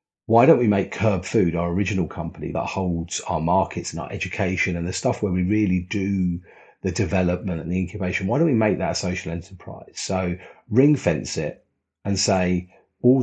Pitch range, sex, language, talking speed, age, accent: 90-105 Hz, male, English, 195 wpm, 40-59, British